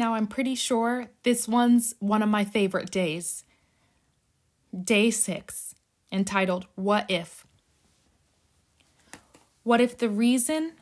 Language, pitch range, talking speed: English, 185-235 Hz, 110 wpm